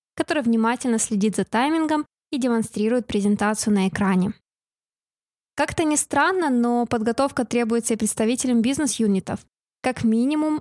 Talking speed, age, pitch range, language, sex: 120 wpm, 20-39, 215-265 Hz, Russian, female